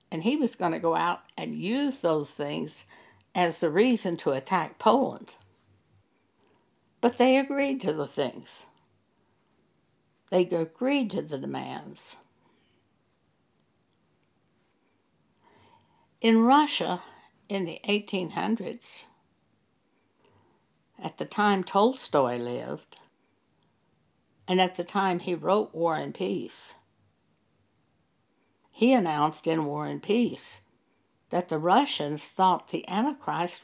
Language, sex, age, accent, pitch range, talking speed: English, female, 60-79, American, 170-240 Hz, 105 wpm